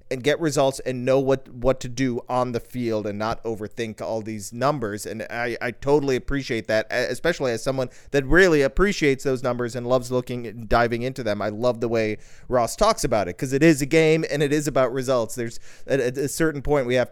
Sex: male